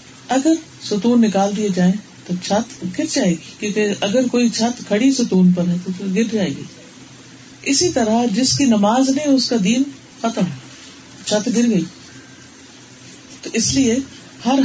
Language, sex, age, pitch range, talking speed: Urdu, female, 40-59, 180-235 Hz, 160 wpm